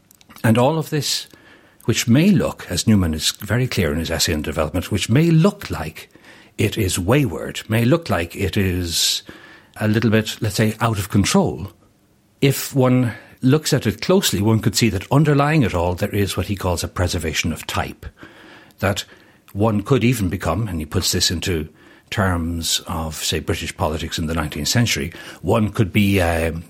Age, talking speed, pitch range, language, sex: 60-79, 185 wpm, 90-120 Hz, English, male